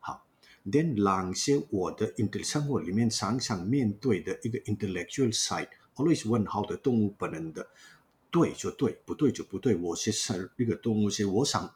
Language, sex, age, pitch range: Chinese, male, 50-69, 100-130 Hz